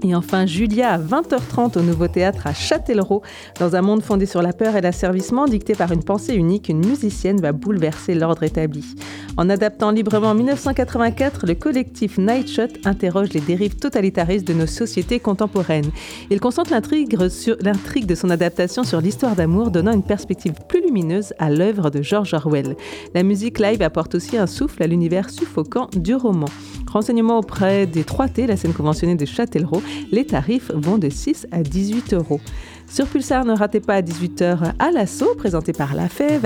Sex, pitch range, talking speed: female, 170-230 Hz, 175 wpm